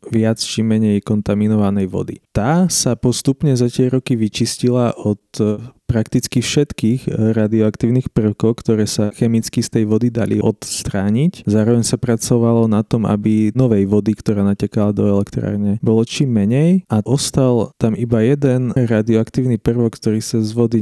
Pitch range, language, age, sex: 105-120 Hz, Slovak, 20-39, male